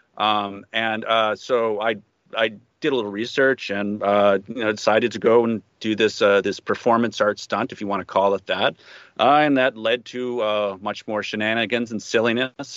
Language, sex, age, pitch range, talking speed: English, male, 30-49, 105-140 Hz, 200 wpm